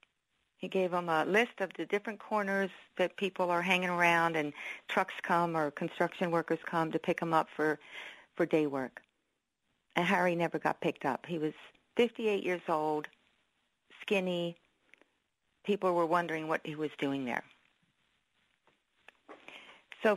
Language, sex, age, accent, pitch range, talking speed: English, female, 50-69, American, 160-195 Hz, 150 wpm